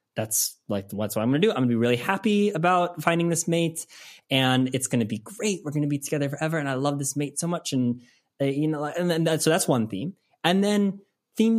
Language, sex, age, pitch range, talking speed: English, male, 20-39, 125-180 Hz, 265 wpm